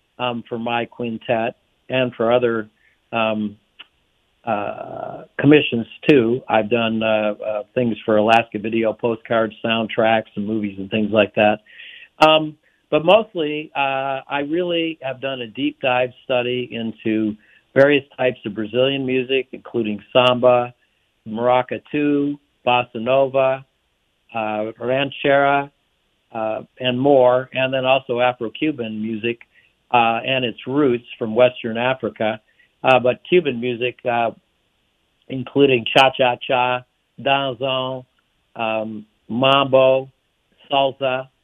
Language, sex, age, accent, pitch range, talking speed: English, male, 60-79, American, 115-135 Hz, 110 wpm